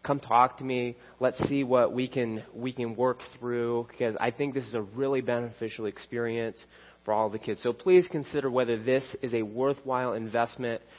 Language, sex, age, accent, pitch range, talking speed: English, male, 30-49, American, 115-140 Hz, 190 wpm